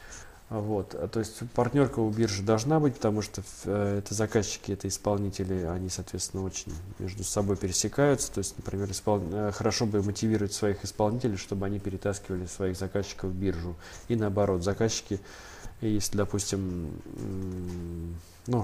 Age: 20-39